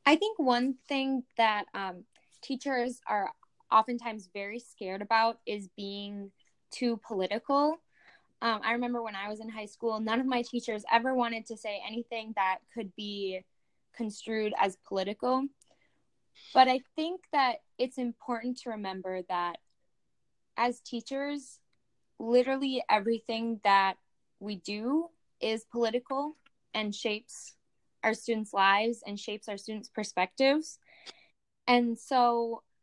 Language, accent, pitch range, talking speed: English, American, 205-250 Hz, 130 wpm